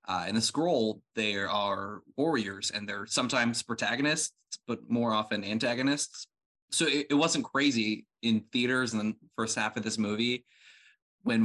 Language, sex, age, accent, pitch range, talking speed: English, male, 20-39, American, 105-120 Hz, 155 wpm